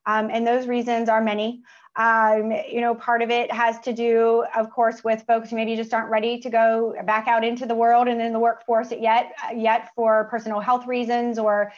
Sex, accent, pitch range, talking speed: female, American, 215-245 Hz, 215 wpm